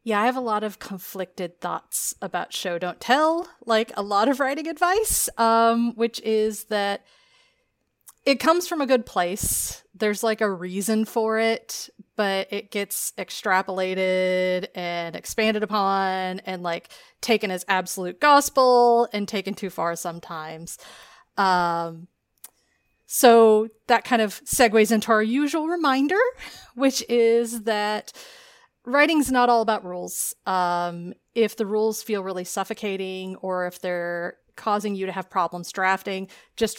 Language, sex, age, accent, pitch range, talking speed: English, female, 30-49, American, 185-235 Hz, 140 wpm